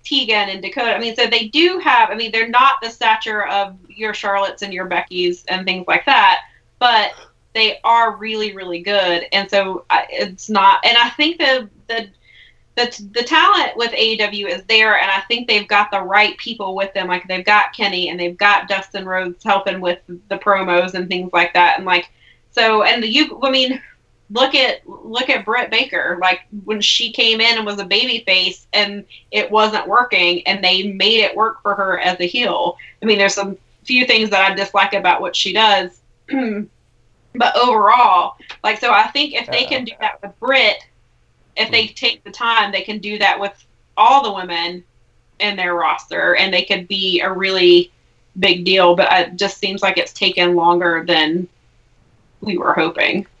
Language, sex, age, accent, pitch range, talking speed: English, female, 20-39, American, 185-225 Hz, 195 wpm